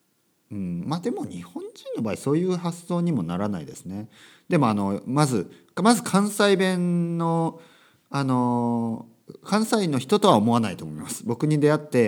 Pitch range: 100-165 Hz